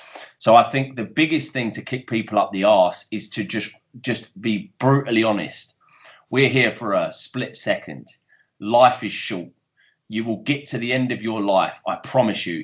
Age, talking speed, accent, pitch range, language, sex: 30-49, 190 wpm, British, 105-135 Hz, English, male